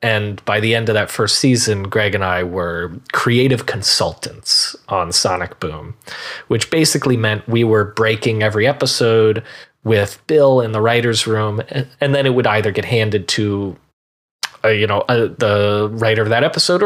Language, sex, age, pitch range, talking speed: English, male, 30-49, 105-130 Hz, 165 wpm